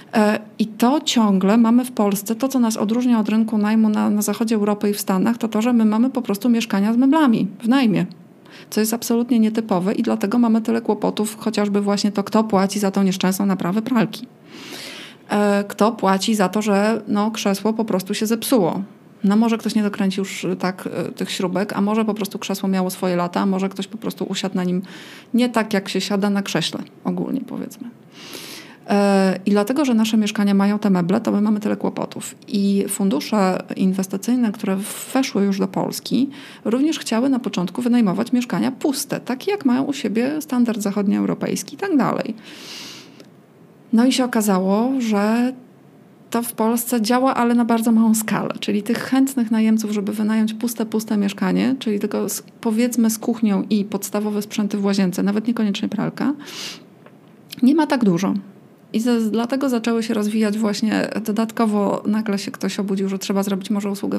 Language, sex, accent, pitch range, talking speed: Polish, female, native, 200-230 Hz, 180 wpm